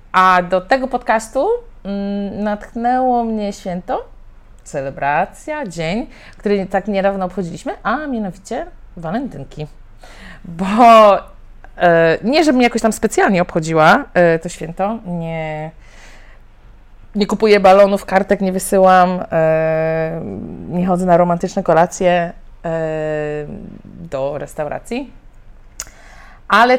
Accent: native